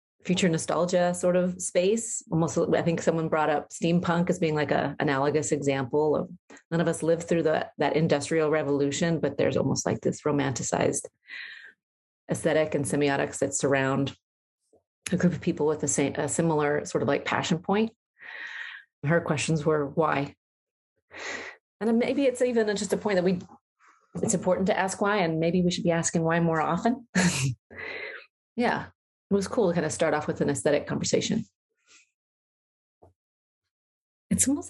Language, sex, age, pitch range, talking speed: English, female, 30-49, 145-180 Hz, 165 wpm